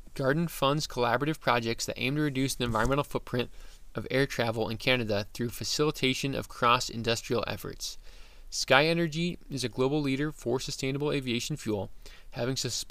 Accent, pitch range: American, 115-145 Hz